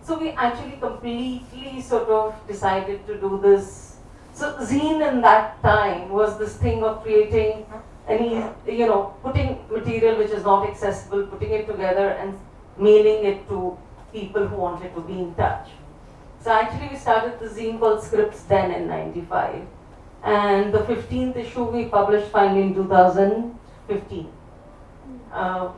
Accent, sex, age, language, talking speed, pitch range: native, female, 40-59, Tamil, 150 wpm, 195-230 Hz